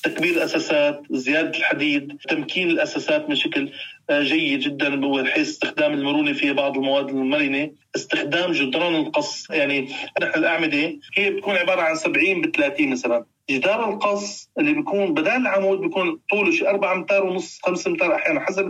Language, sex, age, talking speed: Arabic, male, 40-59, 150 wpm